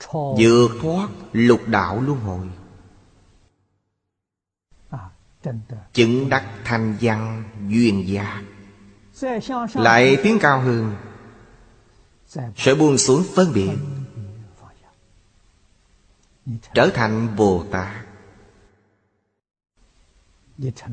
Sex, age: male, 30-49